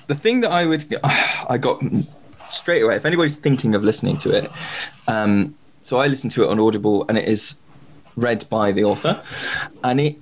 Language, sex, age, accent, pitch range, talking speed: English, male, 20-39, British, 110-140 Hz, 195 wpm